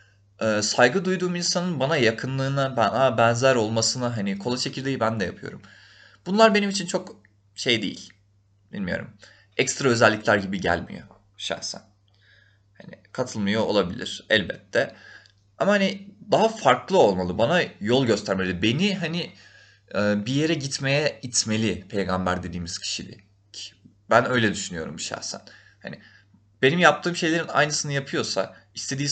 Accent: native